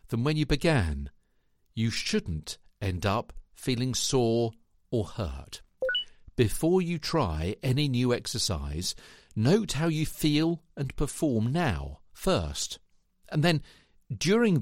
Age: 50-69